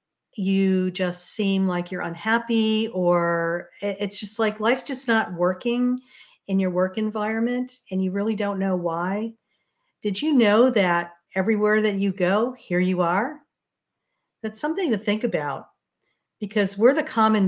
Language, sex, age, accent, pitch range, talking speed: English, female, 50-69, American, 180-230 Hz, 150 wpm